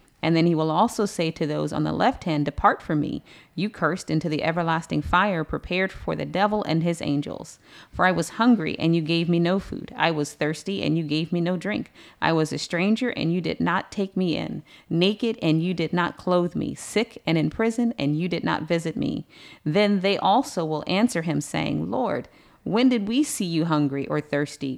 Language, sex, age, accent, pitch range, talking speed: English, female, 40-59, American, 155-195 Hz, 220 wpm